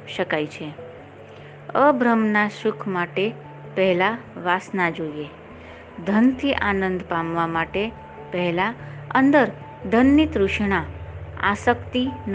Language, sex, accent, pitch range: Gujarati, female, native, 155-230 Hz